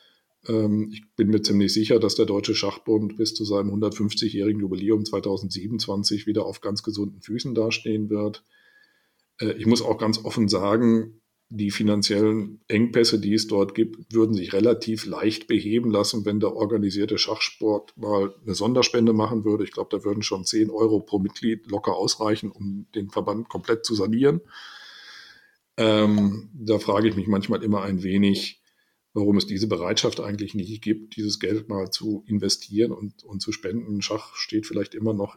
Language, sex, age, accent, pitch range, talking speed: German, male, 40-59, German, 100-110 Hz, 165 wpm